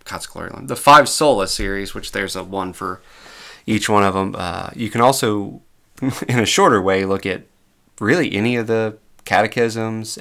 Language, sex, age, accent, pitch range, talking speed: English, male, 30-49, American, 95-115 Hz, 165 wpm